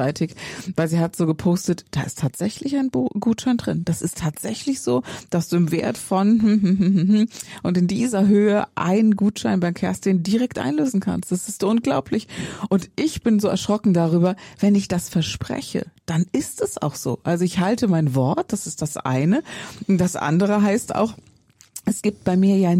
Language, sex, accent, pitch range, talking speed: German, female, German, 160-205 Hz, 180 wpm